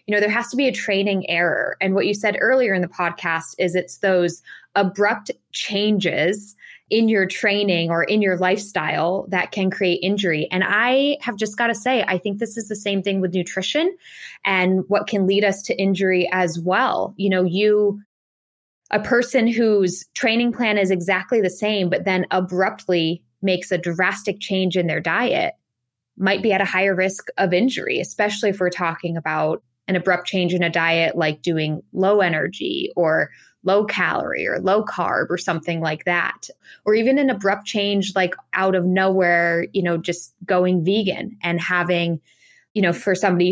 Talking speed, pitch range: 185 wpm, 175-205 Hz